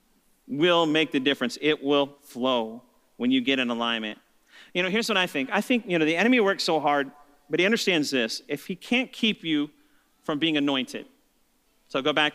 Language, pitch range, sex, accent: English, 145-230 Hz, male, American